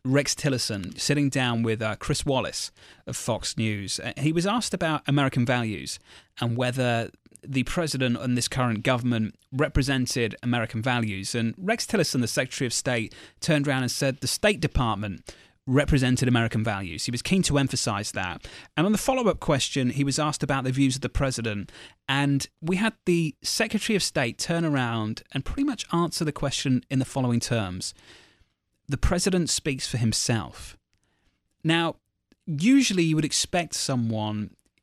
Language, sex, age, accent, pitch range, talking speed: English, male, 30-49, British, 115-150 Hz, 165 wpm